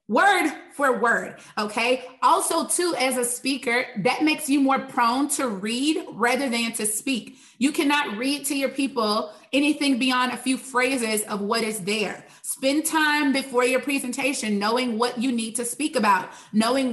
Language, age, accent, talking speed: English, 30-49, American, 170 wpm